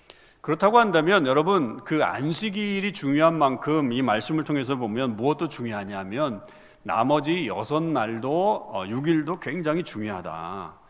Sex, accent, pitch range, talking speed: male, Korean, 125-170 Hz, 105 wpm